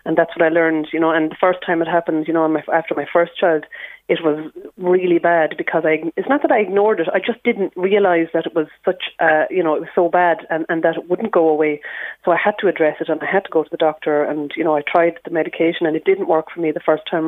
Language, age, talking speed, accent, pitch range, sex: English, 30-49, 290 wpm, Irish, 155-175 Hz, female